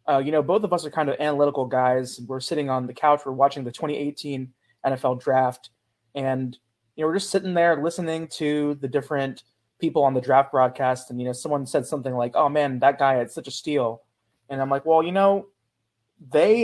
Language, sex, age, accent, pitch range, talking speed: English, male, 20-39, American, 130-165 Hz, 215 wpm